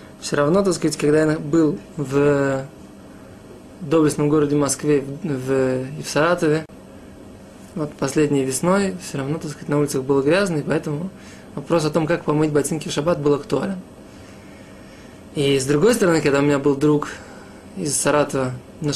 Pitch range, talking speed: 145-170 Hz, 160 wpm